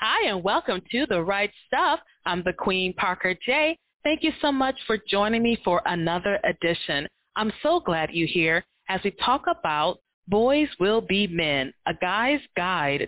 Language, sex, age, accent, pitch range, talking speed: English, female, 30-49, American, 170-220 Hz, 175 wpm